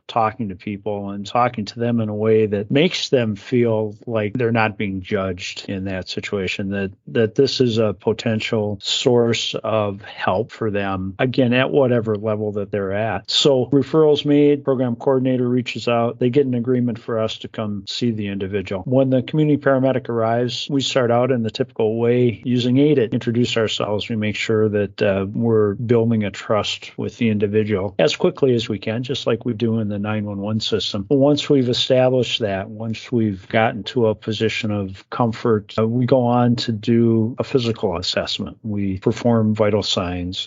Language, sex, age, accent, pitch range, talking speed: English, male, 40-59, American, 105-125 Hz, 185 wpm